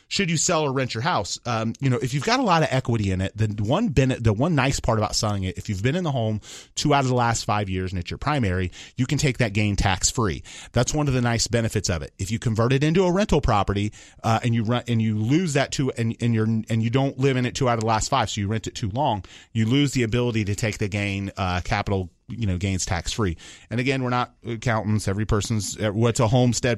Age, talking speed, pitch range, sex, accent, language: 30-49, 280 wpm, 105-130 Hz, male, American, English